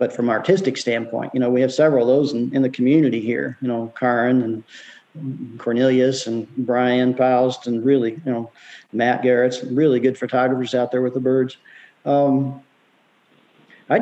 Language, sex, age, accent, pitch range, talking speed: English, male, 40-59, American, 125-145 Hz, 175 wpm